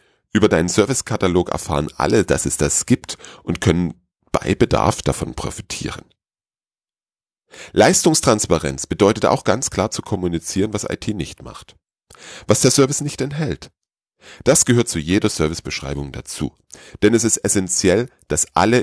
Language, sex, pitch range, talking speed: German, male, 80-110 Hz, 135 wpm